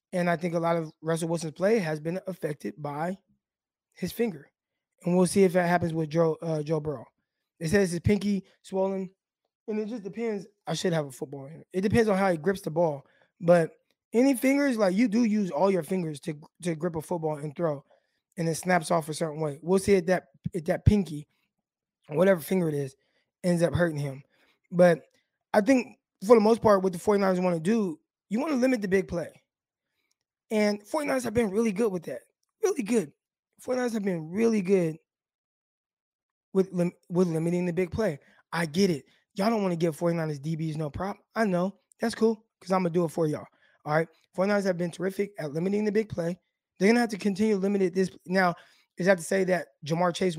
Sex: male